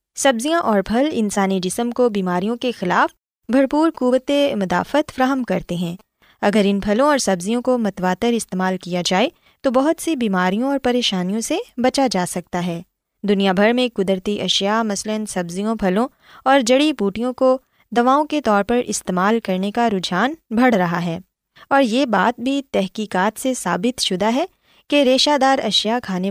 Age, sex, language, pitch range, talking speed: 20-39, female, Urdu, 190-260 Hz, 165 wpm